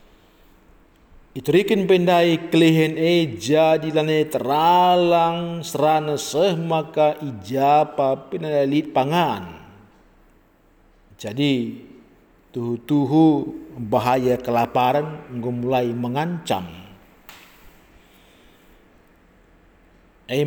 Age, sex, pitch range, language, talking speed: 50-69, male, 125-160 Hz, Indonesian, 65 wpm